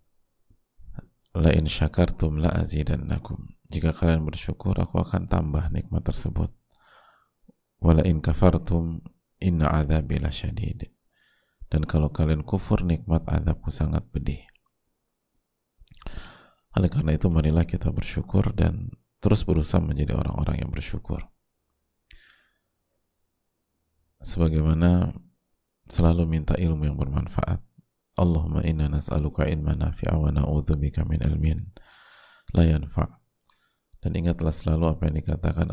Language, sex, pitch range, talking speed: Indonesian, male, 75-90 Hz, 100 wpm